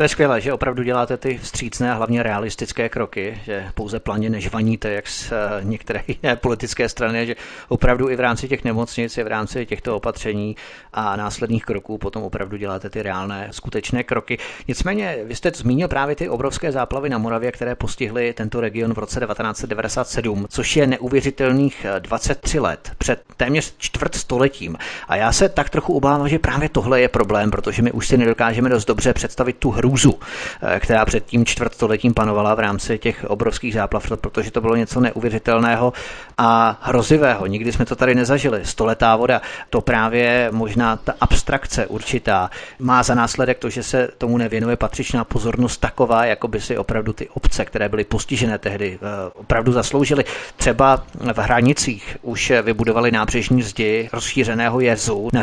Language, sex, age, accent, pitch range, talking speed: Czech, male, 30-49, native, 110-125 Hz, 165 wpm